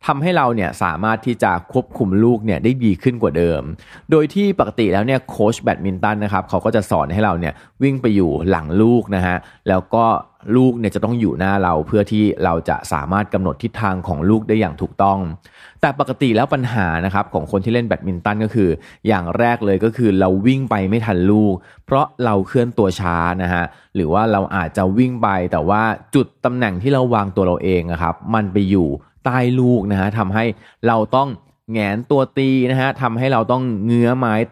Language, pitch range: Thai, 95-120 Hz